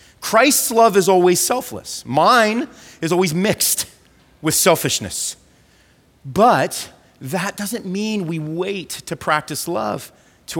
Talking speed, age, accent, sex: 120 wpm, 40-59, American, male